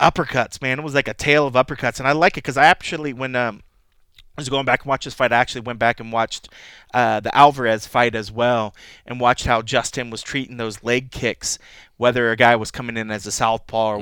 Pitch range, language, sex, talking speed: 115-140 Hz, English, male, 245 wpm